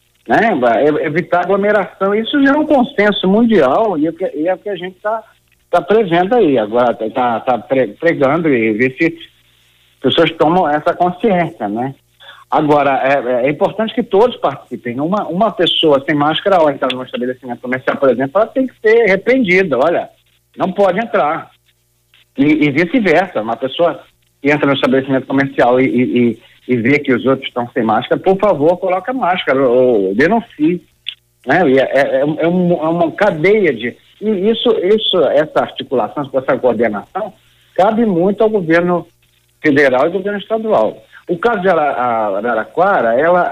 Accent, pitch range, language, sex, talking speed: Brazilian, 130-205 Hz, Portuguese, male, 155 wpm